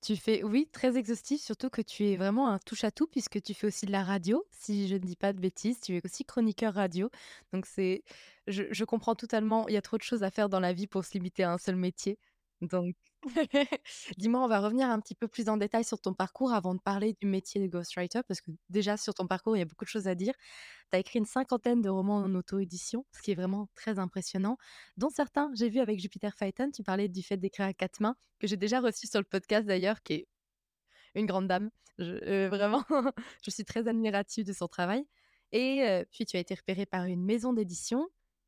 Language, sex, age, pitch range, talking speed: French, female, 20-39, 195-240 Hz, 240 wpm